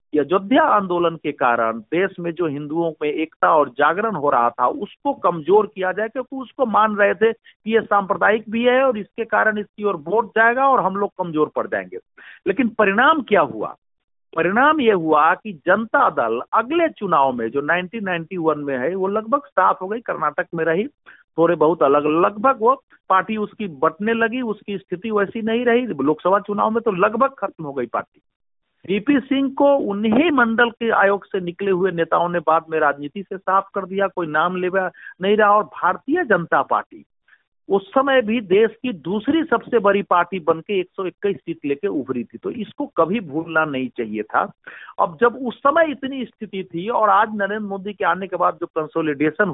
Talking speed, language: 180 wpm, Hindi